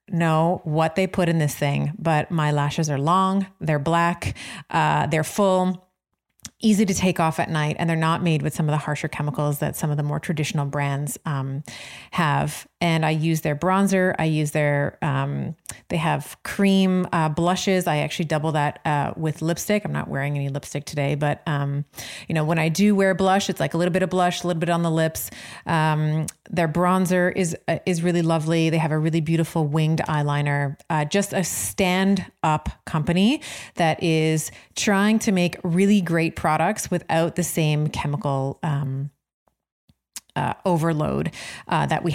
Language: English